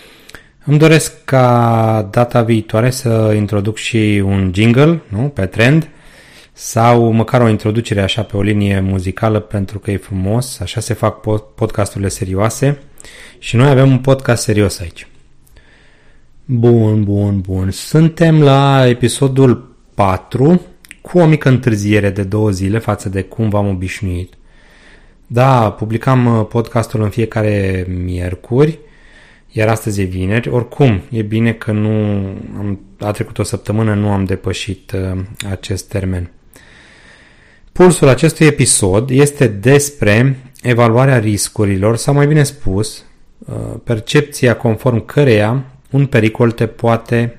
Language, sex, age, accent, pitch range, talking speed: Romanian, male, 30-49, native, 100-125 Hz, 125 wpm